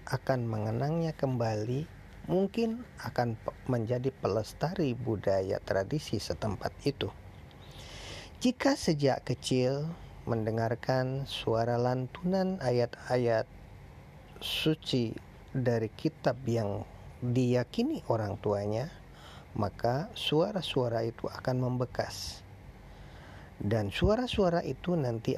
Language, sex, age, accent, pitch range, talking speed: Indonesian, male, 40-59, native, 115-140 Hz, 80 wpm